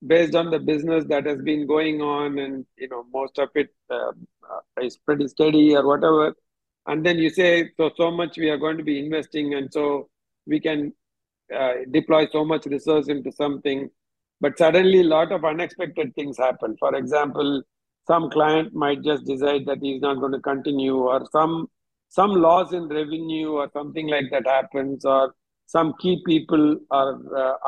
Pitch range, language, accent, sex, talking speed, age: 140-170 Hz, English, Indian, male, 180 wpm, 50-69